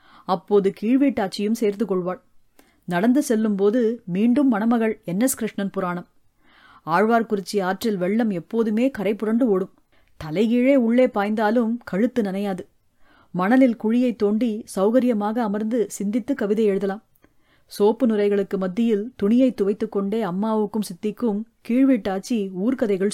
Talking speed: 110 wpm